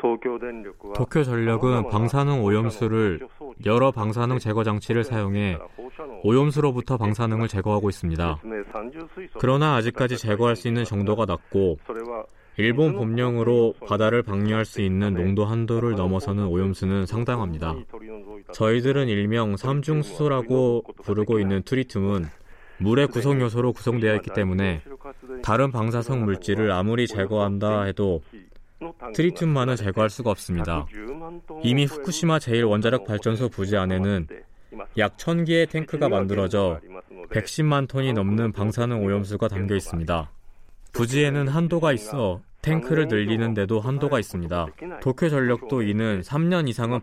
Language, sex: Korean, male